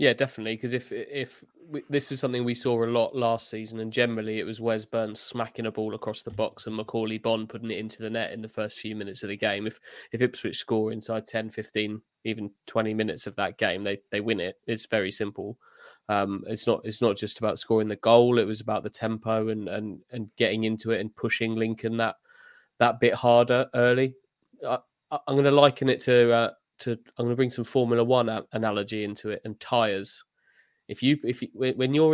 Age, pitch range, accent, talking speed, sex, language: 20-39, 110-120 Hz, British, 225 wpm, male, English